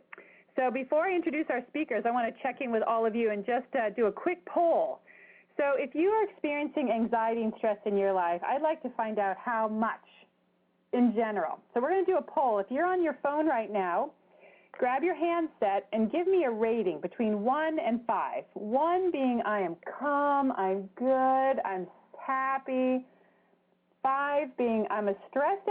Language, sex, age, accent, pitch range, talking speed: English, female, 30-49, American, 220-300 Hz, 190 wpm